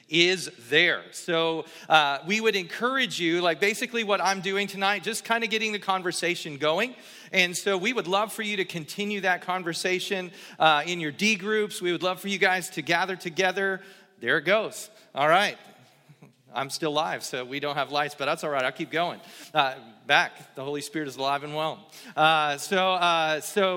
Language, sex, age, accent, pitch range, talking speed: English, male, 40-59, American, 170-210 Hz, 200 wpm